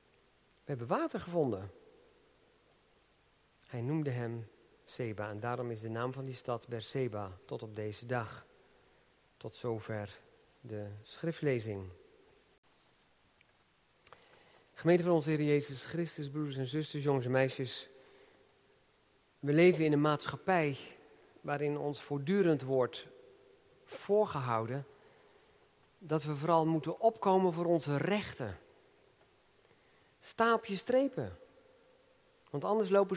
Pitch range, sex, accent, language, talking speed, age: 125-200 Hz, male, Dutch, Dutch, 110 wpm, 50-69